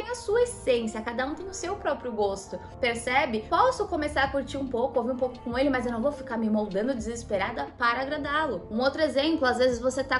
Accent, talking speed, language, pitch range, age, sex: Brazilian, 230 wpm, Portuguese, 230-290 Hz, 20-39, female